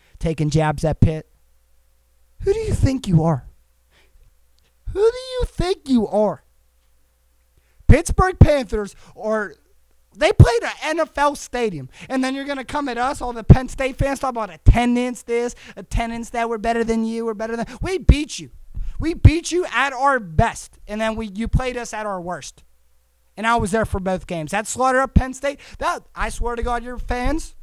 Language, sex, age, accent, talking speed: English, male, 30-49, American, 195 wpm